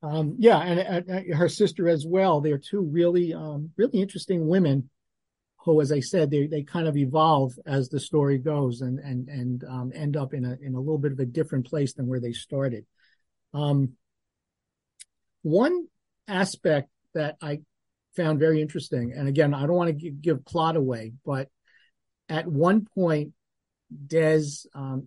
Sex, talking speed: male, 175 wpm